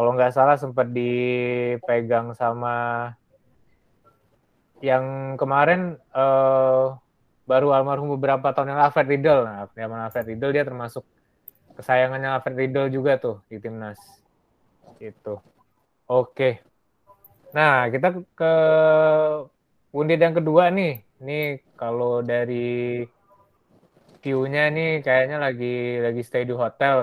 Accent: native